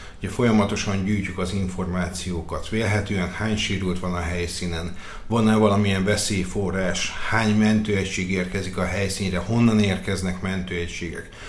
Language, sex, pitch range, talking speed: Hungarian, male, 90-105 Hz, 115 wpm